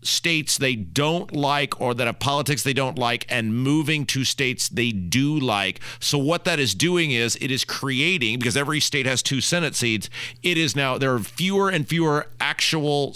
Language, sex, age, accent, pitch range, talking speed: English, male, 40-59, American, 120-165 Hz, 195 wpm